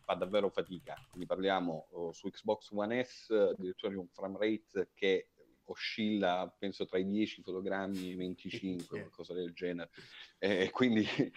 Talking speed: 150 wpm